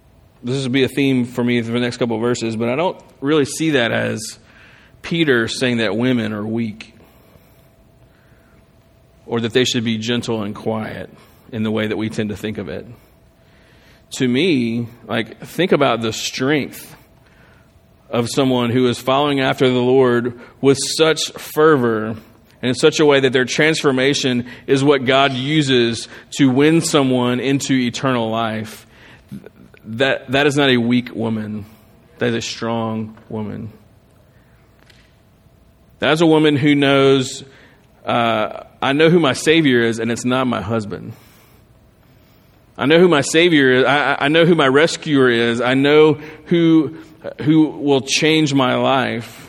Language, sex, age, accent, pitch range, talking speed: English, male, 40-59, American, 115-140 Hz, 155 wpm